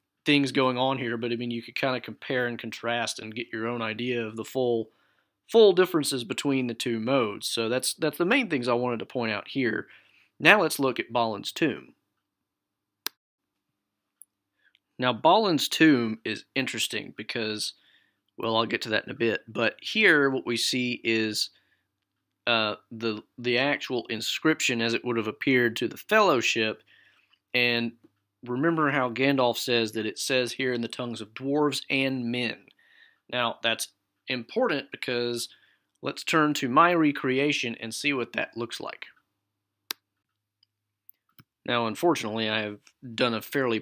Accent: American